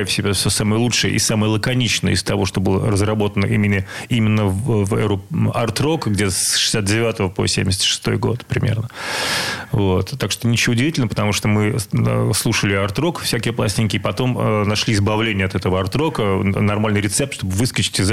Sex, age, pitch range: male, 30-49, 100-120 Hz